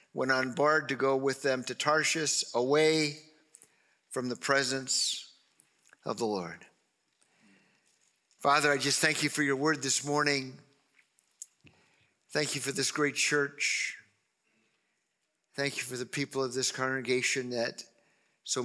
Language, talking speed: English, 135 wpm